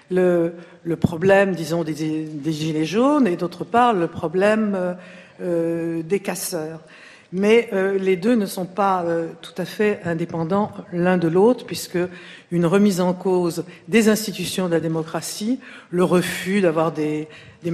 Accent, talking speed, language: French, 155 wpm, French